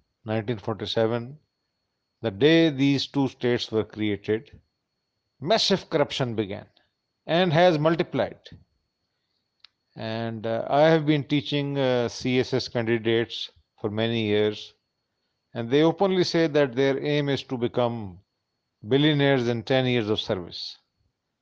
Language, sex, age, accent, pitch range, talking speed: English, male, 50-69, Indian, 115-145 Hz, 120 wpm